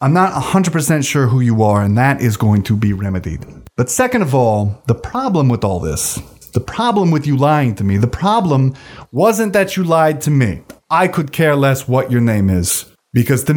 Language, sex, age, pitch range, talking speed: English, male, 30-49, 120-185 Hz, 210 wpm